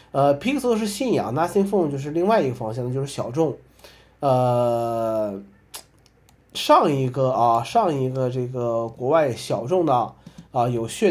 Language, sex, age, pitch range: Chinese, male, 20-39, 115-150 Hz